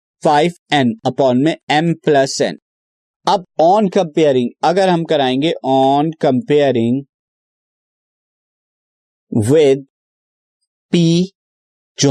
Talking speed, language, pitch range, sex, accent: 90 wpm, Hindi, 135-170 Hz, male, native